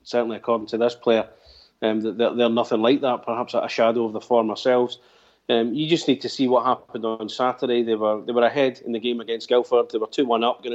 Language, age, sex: English, 30-49, male